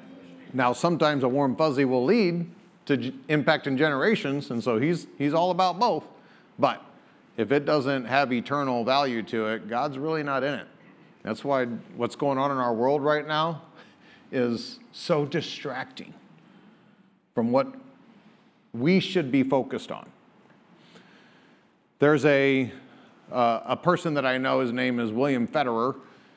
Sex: male